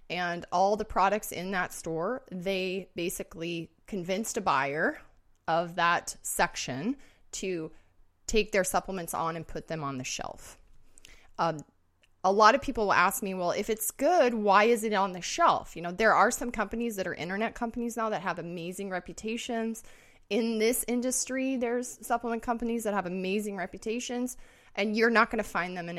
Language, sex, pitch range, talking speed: English, female, 170-220 Hz, 180 wpm